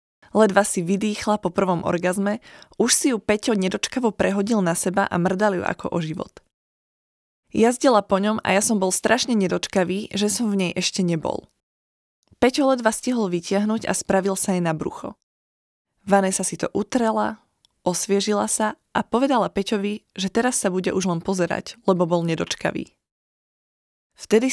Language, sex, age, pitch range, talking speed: Slovak, female, 20-39, 180-220 Hz, 160 wpm